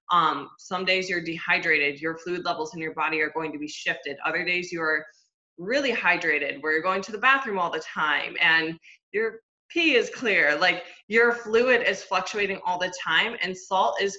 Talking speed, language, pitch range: 195 wpm, English, 160-195 Hz